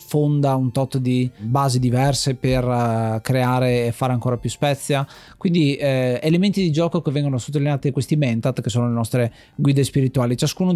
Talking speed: 165 wpm